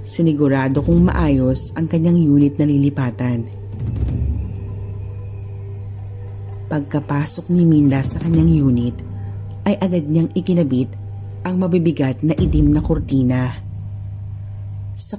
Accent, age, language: native, 40-59, Filipino